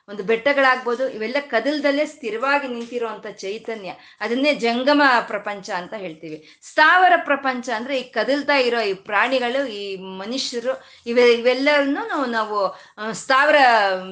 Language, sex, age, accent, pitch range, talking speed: Kannada, female, 20-39, native, 210-280 Hz, 105 wpm